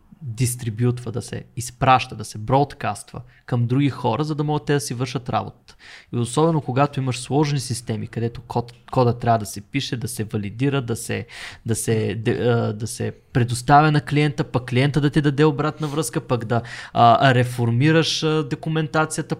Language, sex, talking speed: Bulgarian, male, 170 wpm